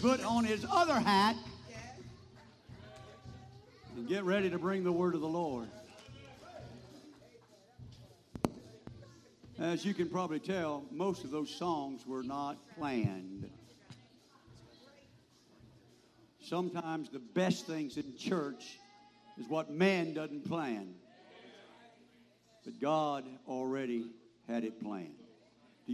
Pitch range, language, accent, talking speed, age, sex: 115-160 Hz, English, American, 105 wpm, 60-79, male